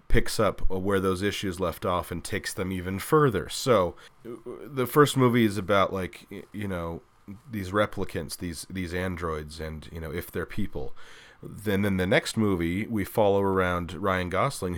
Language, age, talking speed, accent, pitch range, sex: English, 30-49, 170 wpm, American, 90-105 Hz, male